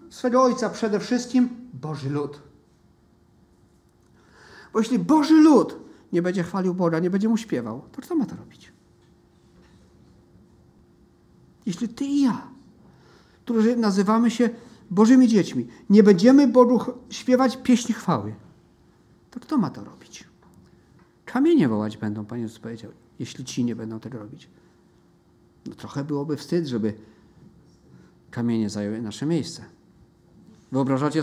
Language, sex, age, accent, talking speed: Polish, male, 50-69, native, 125 wpm